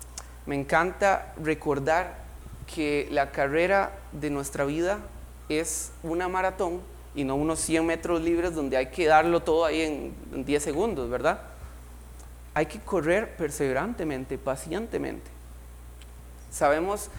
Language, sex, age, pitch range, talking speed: Spanish, male, 30-49, 120-170 Hz, 120 wpm